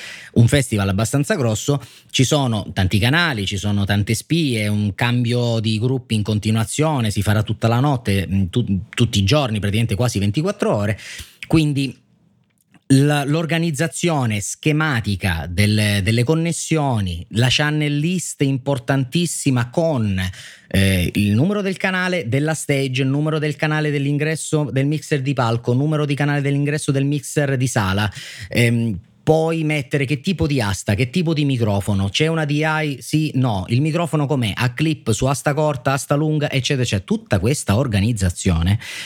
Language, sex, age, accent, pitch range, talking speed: Italian, male, 30-49, native, 100-145 Hz, 155 wpm